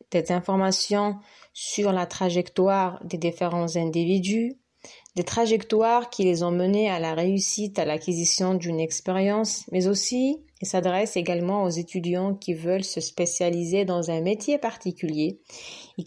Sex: female